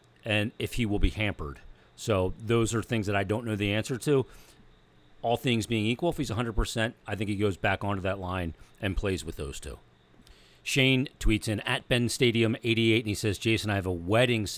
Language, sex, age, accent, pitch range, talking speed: English, male, 40-59, American, 100-125 Hz, 220 wpm